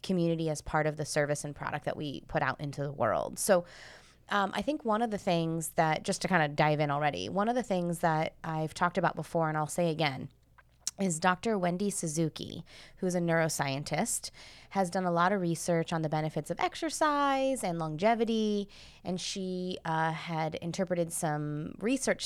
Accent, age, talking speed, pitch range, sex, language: American, 20-39, 190 wpm, 155-190 Hz, female, English